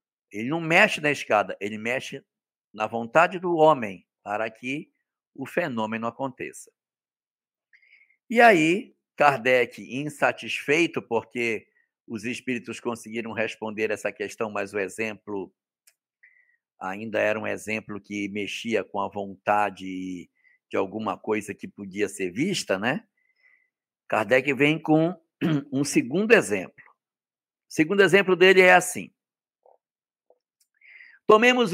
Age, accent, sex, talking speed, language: 60-79, Brazilian, male, 115 wpm, Portuguese